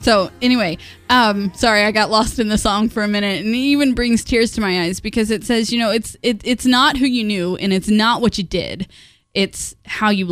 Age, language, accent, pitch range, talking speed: 10-29, English, American, 170-215 Hz, 245 wpm